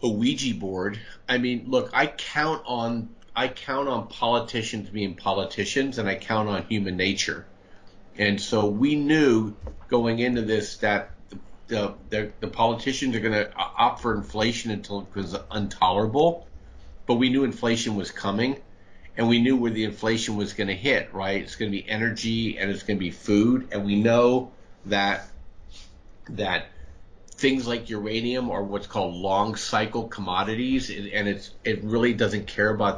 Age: 50-69